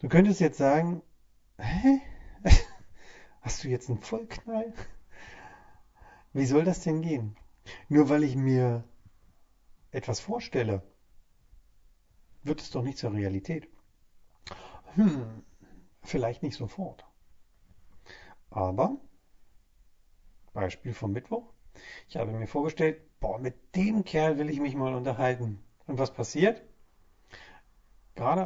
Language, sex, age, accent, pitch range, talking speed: German, male, 40-59, German, 95-140 Hz, 110 wpm